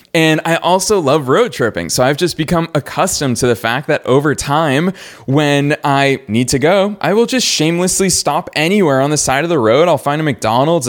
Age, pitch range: 20-39, 130-195 Hz